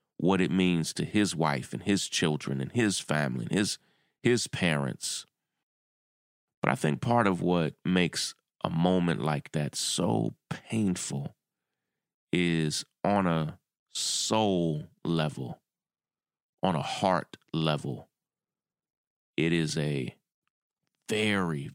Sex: male